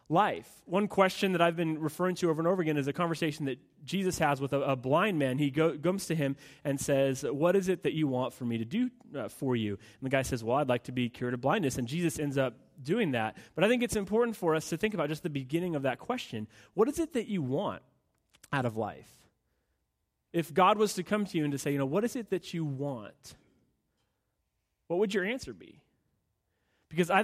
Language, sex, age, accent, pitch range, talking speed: English, male, 30-49, American, 130-180 Hz, 240 wpm